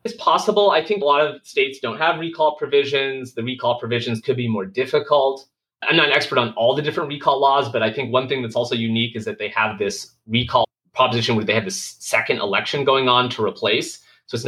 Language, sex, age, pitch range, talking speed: English, male, 30-49, 115-160 Hz, 230 wpm